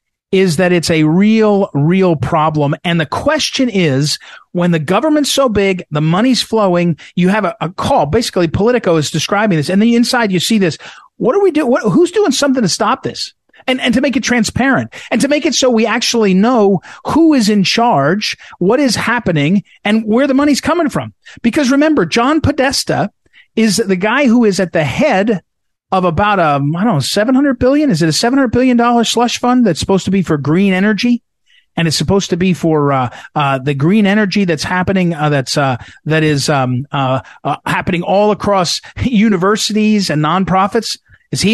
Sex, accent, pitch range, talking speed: male, American, 155-225 Hz, 195 wpm